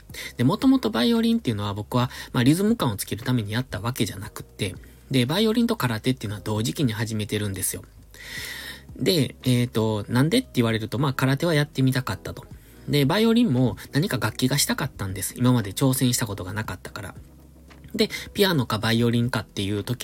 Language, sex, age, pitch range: Japanese, male, 20-39, 110-145 Hz